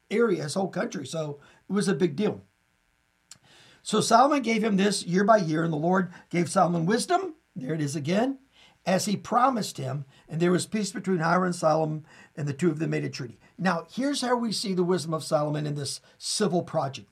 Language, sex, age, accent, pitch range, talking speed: English, male, 50-69, American, 155-210 Hz, 215 wpm